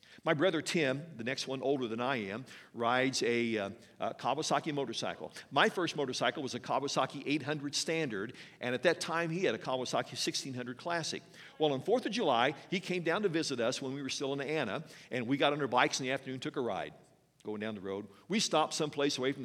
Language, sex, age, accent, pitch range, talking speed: English, male, 50-69, American, 140-175 Hz, 225 wpm